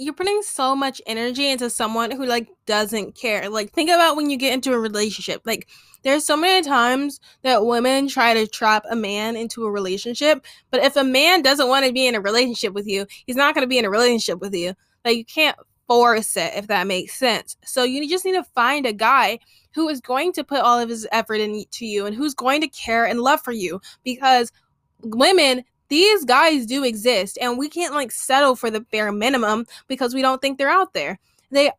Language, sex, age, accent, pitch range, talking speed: English, female, 10-29, American, 220-275 Hz, 225 wpm